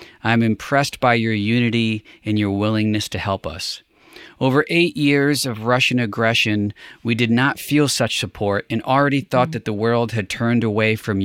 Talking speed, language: 180 wpm, English